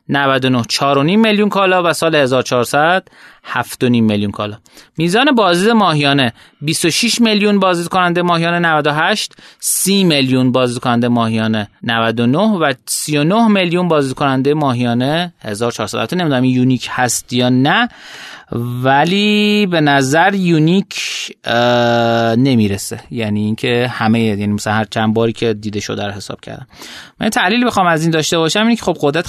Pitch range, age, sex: 125-180 Hz, 30-49, male